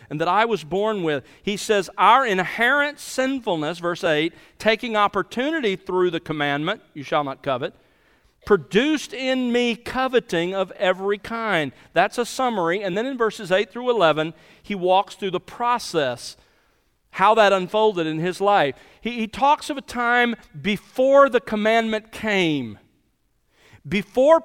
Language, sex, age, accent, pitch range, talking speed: English, male, 50-69, American, 165-240 Hz, 150 wpm